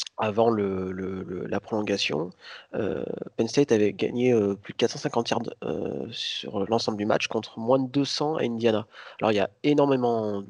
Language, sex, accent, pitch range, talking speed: French, male, French, 110-130 Hz, 185 wpm